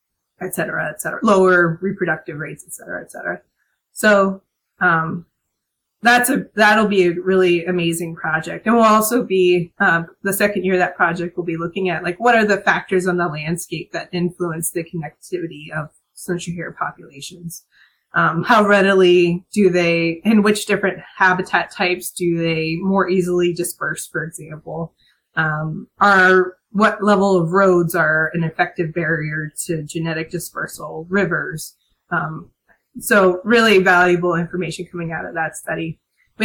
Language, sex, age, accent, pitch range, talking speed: English, female, 20-39, American, 170-195 Hz, 155 wpm